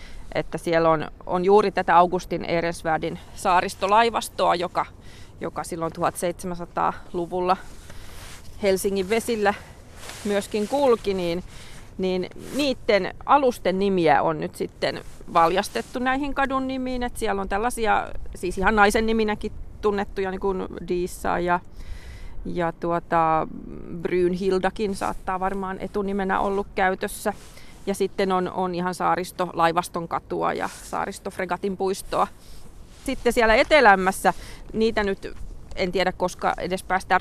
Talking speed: 115 wpm